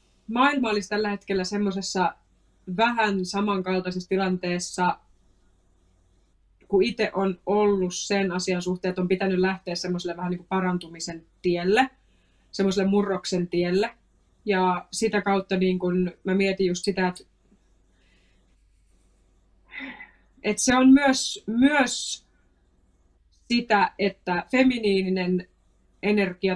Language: Finnish